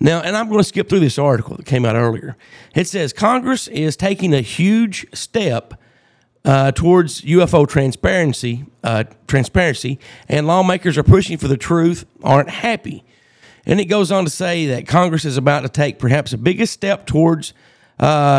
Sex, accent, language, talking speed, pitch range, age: male, American, English, 175 wpm, 130-175 Hz, 40-59